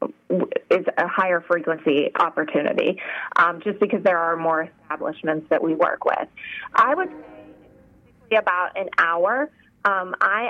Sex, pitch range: female, 170-215 Hz